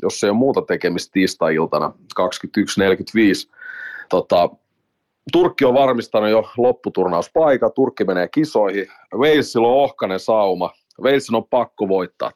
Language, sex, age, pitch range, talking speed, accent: Finnish, male, 30-49, 100-125 Hz, 120 wpm, native